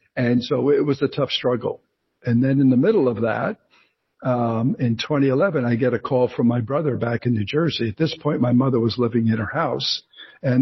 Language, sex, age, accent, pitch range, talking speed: English, male, 60-79, American, 120-150 Hz, 220 wpm